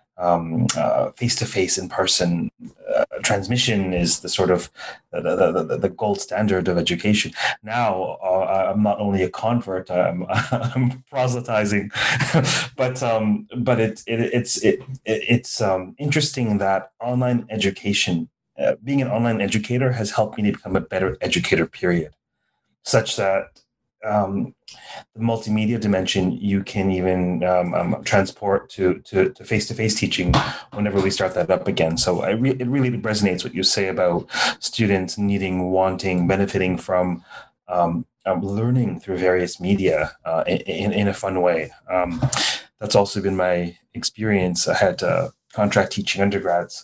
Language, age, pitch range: English, 30-49, 90-115 Hz